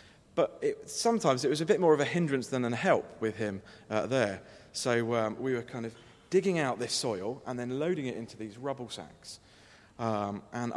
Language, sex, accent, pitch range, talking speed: English, male, British, 115-155 Hz, 205 wpm